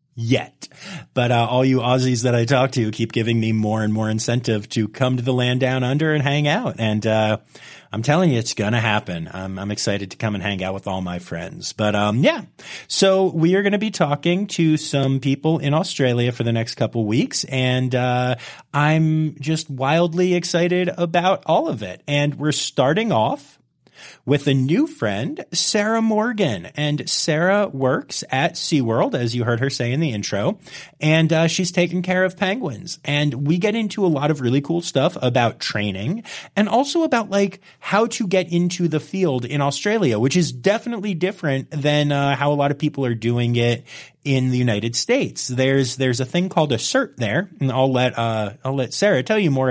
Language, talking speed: English, 205 wpm